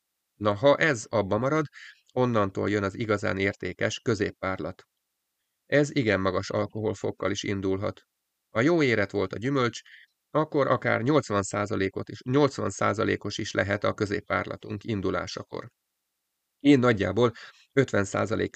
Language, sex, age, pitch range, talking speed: Hungarian, male, 30-49, 100-115 Hz, 115 wpm